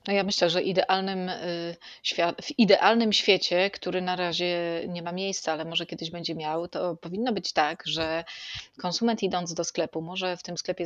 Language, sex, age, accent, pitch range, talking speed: Polish, female, 30-49, native, 165-195 Hz, 175 wpm